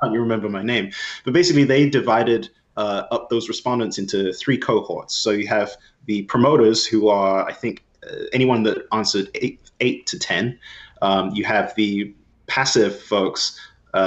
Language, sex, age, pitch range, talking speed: English, male, 20-39, 95-130 Hz, 160 wpm